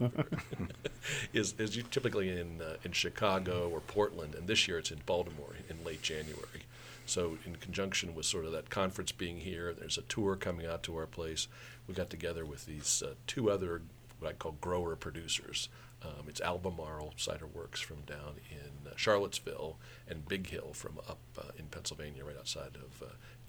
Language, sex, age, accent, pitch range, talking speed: English, male, 50-69, American, 80-105 Hz, 180 wpm